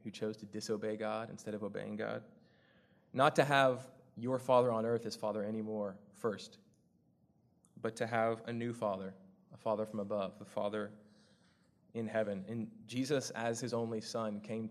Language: English